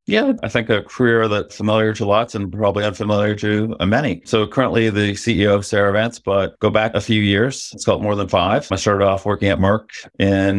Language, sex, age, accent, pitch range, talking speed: English, male, 40-59, American, 90-105 Hz, 220 wpm